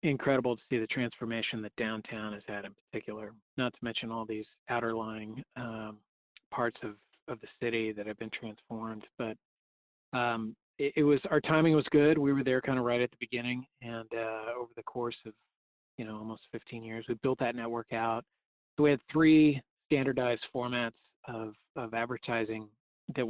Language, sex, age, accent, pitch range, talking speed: English, male, 40-59, American, 115-130 Hz, 185 wpm